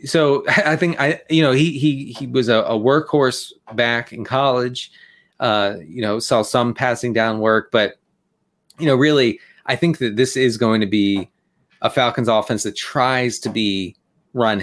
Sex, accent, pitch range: male, American, 105-135 Hz